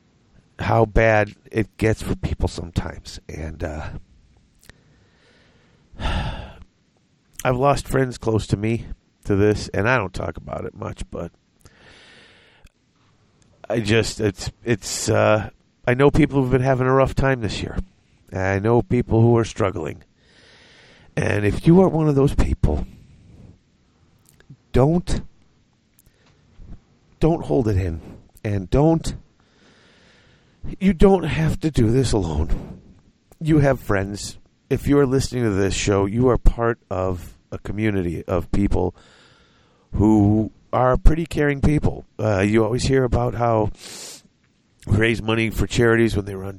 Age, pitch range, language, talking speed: 50-69, 95-125 Hz, English, 135 wpm